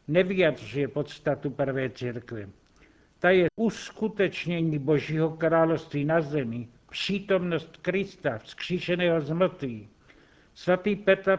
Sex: male